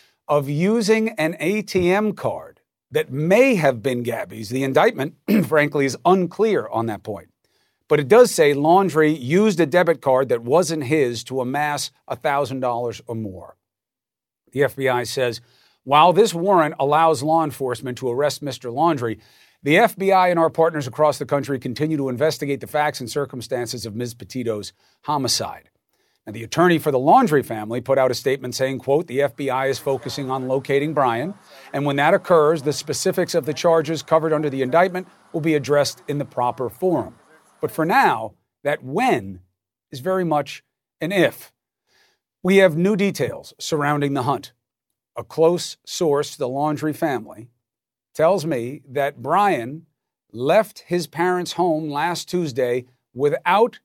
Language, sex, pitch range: English, male, 125-165 Hz